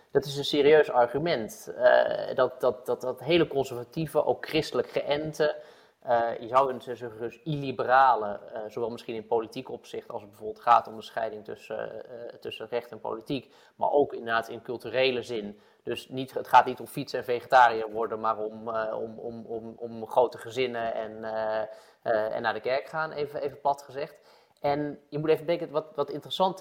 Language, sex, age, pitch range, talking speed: Dutch, male, 20-39, 120-155 Hz, 195 wpm